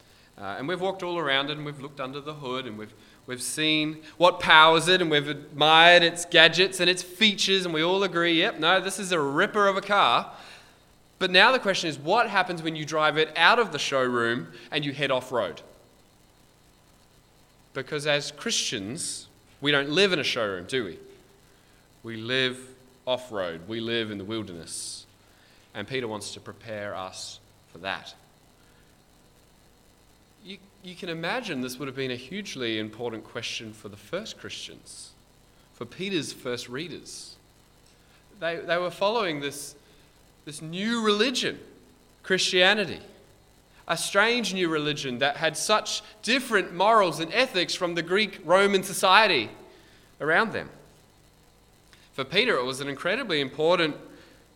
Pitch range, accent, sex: 125-185 Hz, Australian, male